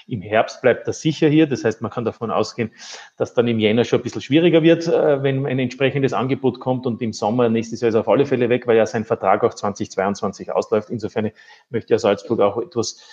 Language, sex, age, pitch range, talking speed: German, male, 30-49, 115-135 Hz, 230 wpm